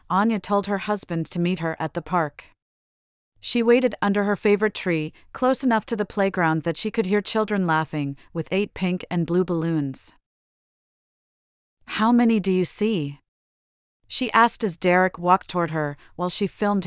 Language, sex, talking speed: English, female, 170 wpm